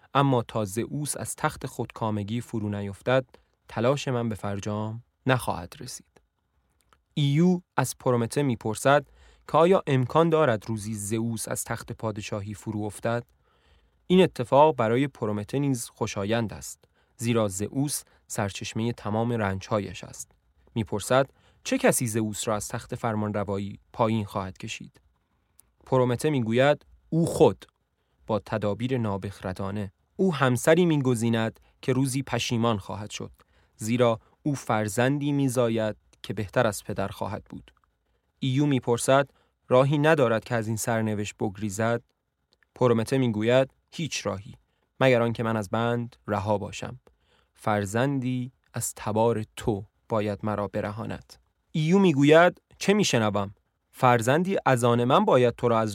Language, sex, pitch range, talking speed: Persian, male, 105-130 Hz, 130 wpm